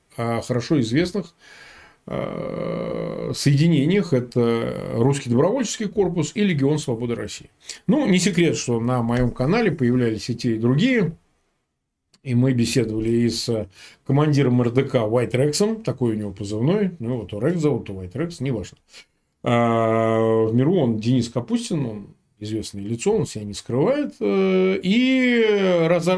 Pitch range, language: 120-165 Hz, Russian